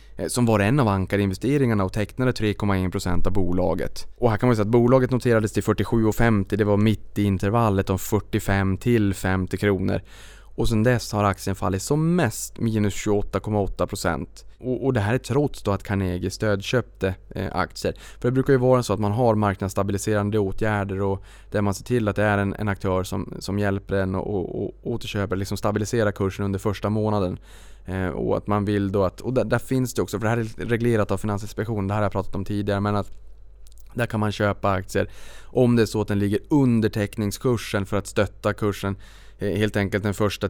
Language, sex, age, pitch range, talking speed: Swedish, male, 20-39, 100-110 Hz, 200 wpm